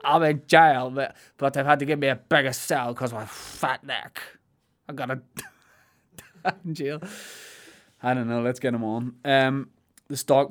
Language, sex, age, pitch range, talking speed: English, male, 20-39, 115-145 Hz, 175 wpm